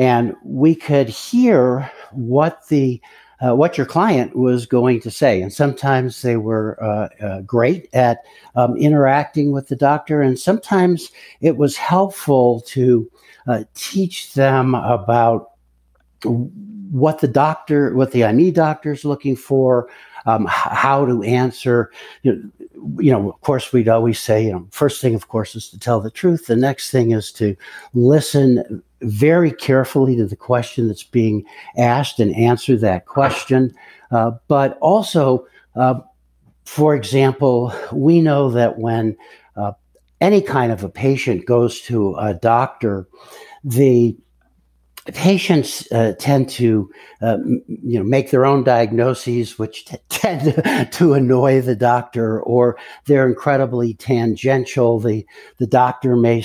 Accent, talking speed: American, 145 wpm